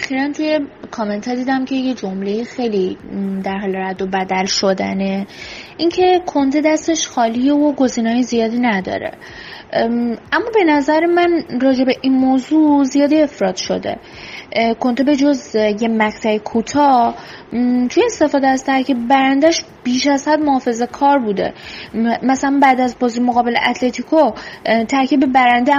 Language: Persian